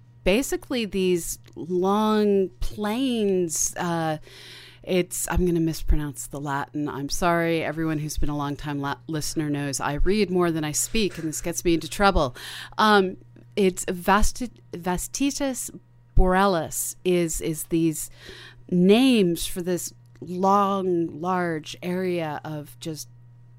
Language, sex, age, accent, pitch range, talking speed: English, female, 30-49, American, 135-185 Hz, 120 wpm